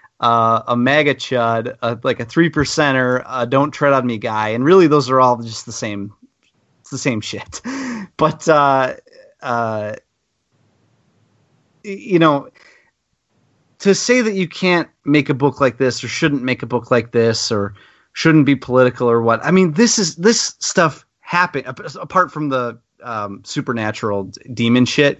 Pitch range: 115-150 Hz